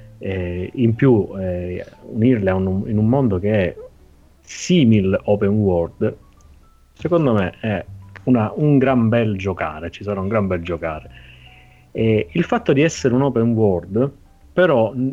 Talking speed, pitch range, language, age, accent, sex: 145 wpm, 90-115 Hz, Italian, 30-49, native, male